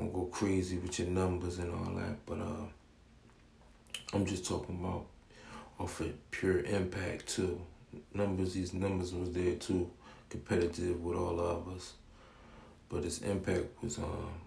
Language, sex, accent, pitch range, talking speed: English, male, American, 85-95 Hz, 145 wpm